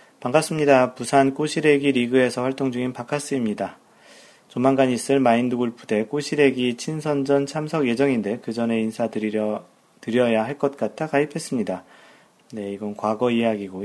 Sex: male